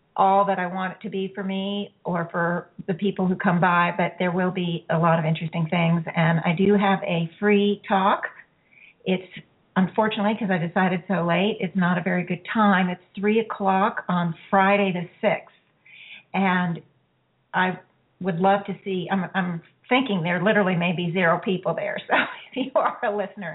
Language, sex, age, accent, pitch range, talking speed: English, female, 50-69, American, 175-205 Hz, 190 wpm